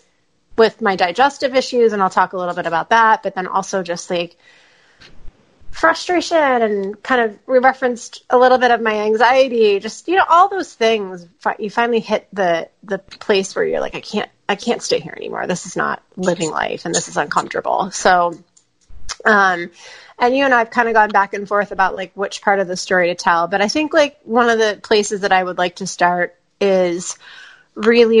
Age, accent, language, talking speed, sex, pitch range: 30-49, American, English, 205 wpm, female, 180-230 Hz